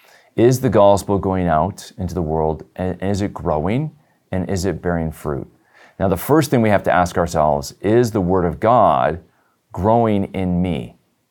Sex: male